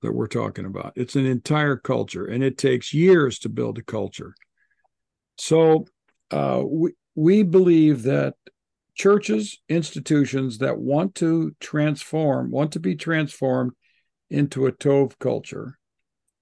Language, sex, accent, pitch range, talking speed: English, male, American, 125-160 Hz, 130 wpm